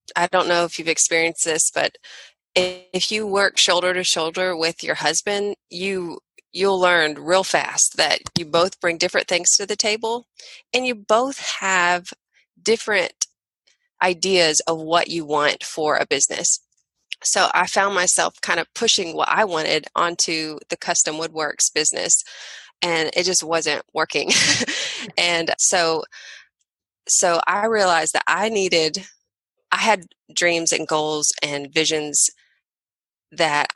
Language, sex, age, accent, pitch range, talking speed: English, female, 20-39, American, 160-190 Hz, 140 wpm